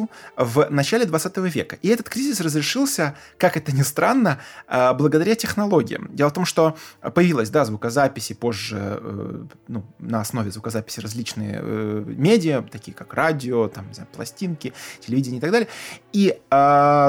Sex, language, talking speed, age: male, Russian, 145 wpm, 20-39